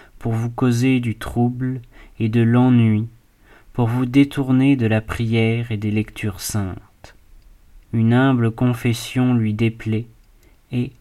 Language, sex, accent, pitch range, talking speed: French, male, French, 110-125 Hz, 130 wpm